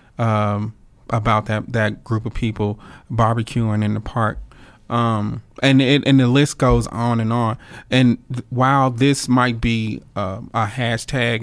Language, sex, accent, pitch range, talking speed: English, male, American, 110-125 Hz, 160 wpm